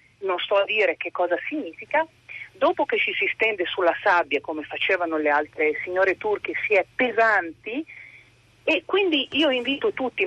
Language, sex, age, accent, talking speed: Italian, female, 40-59, native, 165 wpm